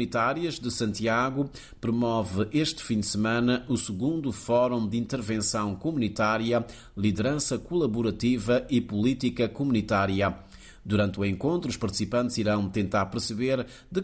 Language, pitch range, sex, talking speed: Portuguese, 105-125 Hz, male, 120 wpm